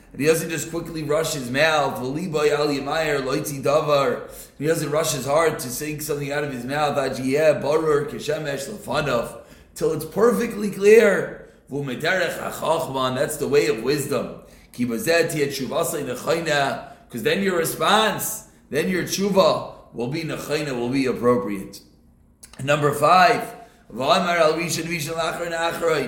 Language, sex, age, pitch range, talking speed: English, male, 30-49, 145-190 Hz, 95 wpm